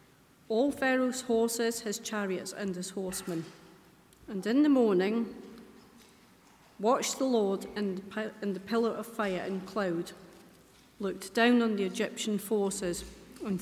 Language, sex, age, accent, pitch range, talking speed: English, female, 40-59, British, 185-225 Hz, 130 wpm